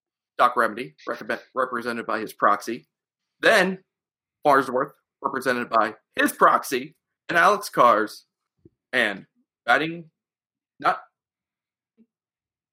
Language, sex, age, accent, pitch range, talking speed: English, male, 30-49, American, 135-190 Hz, 90 wpm